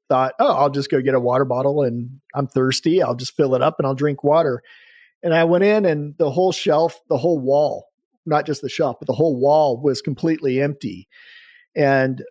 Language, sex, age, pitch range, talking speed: English, male, 40-59, 135-160 Hz, 215 wpm